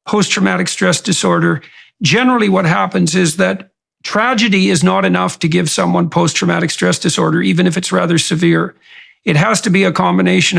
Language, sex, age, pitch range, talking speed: English, male, 50-69, 170-200 Hz, 165 wpm